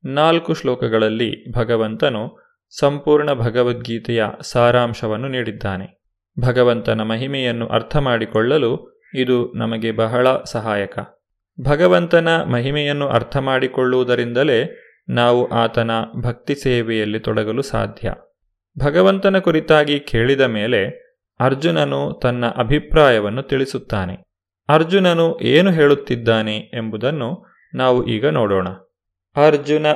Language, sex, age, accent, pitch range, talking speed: Kannada, male, 30-49, native, 115-140 Hz, 80 wpm